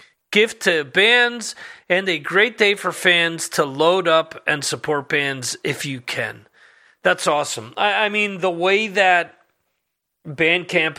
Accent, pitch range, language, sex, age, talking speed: American, 150-200 Hz, English, male, 40-59, 145 wpm